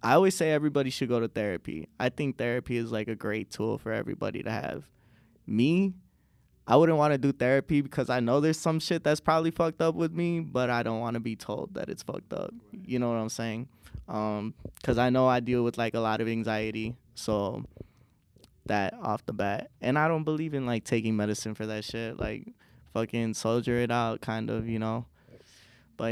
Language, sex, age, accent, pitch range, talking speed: English, male, 20-39, American, 110-130 Hz, 215 wpm